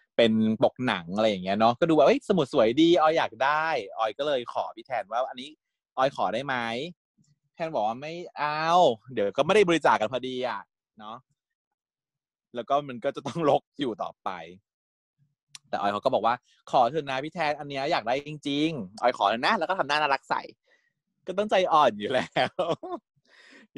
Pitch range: 110-155 Hz